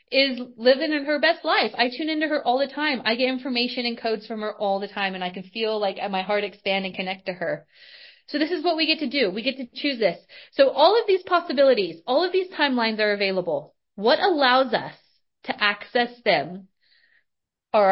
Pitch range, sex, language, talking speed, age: 225-315 Hz, female, English, 220 wpm, 30-49